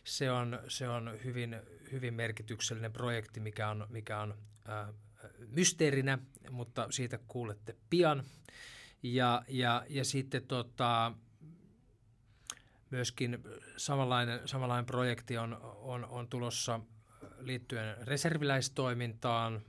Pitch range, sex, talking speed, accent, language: 110-125 Hz, male, 100 wpm, native, Finnish